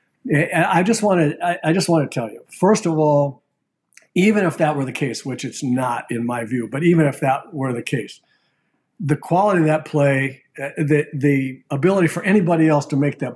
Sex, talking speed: male, 200 wpm